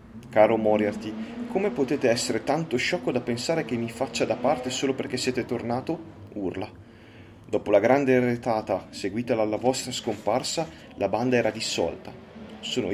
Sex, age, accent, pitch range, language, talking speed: male, 30-49, native, 105-135 Hz, Italian, 150 wpm